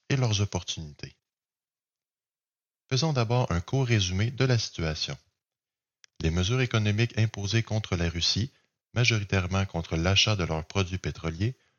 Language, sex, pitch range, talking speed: French, male, 85-115 Hz, 125 wpm